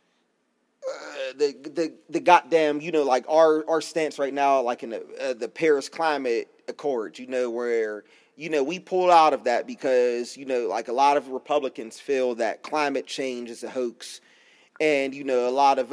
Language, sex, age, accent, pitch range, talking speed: English, male, 30-49, American, 140-175 Hz, 195 wpm